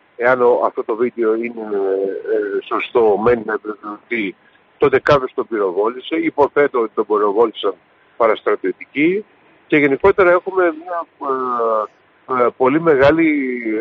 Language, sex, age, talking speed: Greek, male, 50-69, 110 wpm